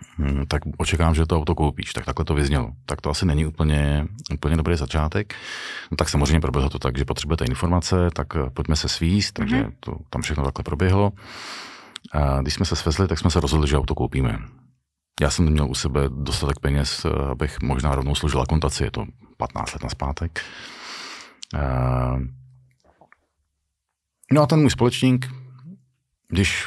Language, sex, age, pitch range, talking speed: Slovak, male, 40-59, 70-105 Hz, 170 wpm